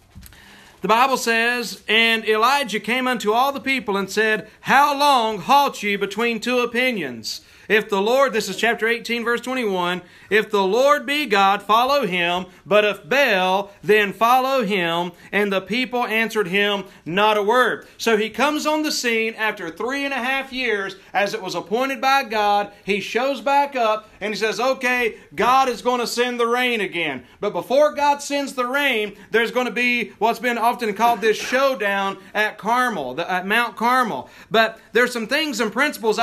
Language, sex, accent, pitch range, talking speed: English, male, American, 205-250 Hz, 180 wpm